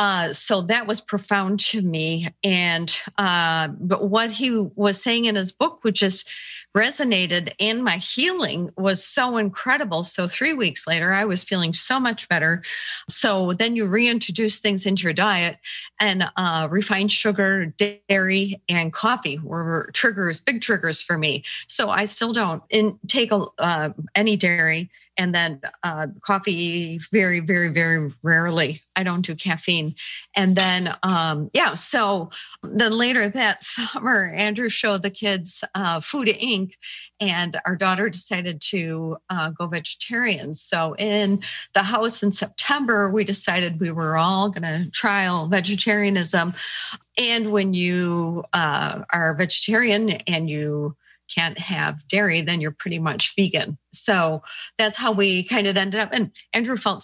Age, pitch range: 40-59, 170-210 Hz